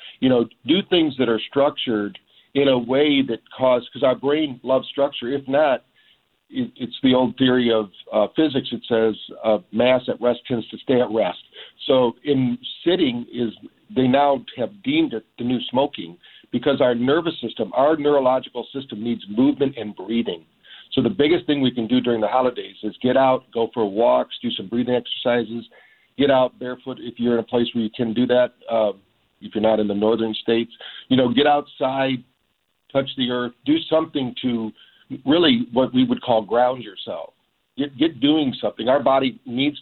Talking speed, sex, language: 190 wpm, male, English